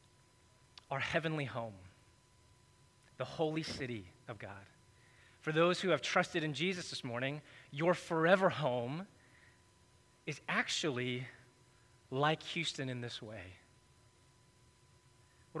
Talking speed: 110 wpm